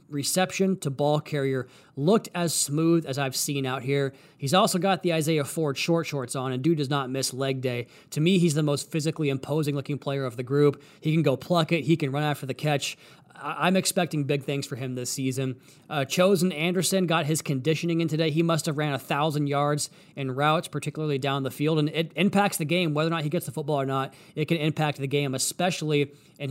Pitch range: 140-165 Hz